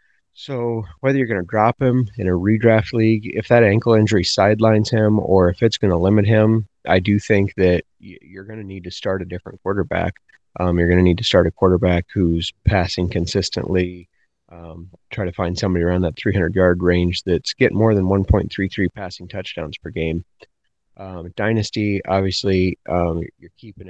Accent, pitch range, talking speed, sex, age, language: American, 90-105 Hz, 185 wpm, male, 30-49, English